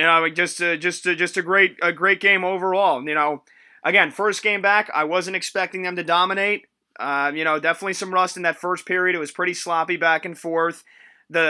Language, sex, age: English, male, 20-39